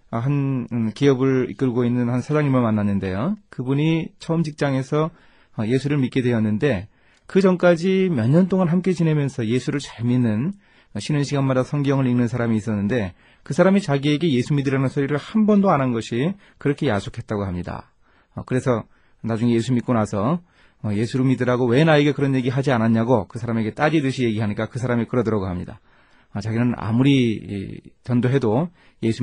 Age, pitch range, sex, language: 30-49, 110-145 Hz, male, Korean